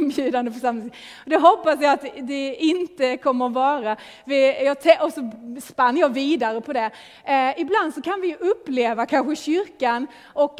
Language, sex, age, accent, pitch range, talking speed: English, female, 30-49, Swedish, 220-285 Hz, 160 wpm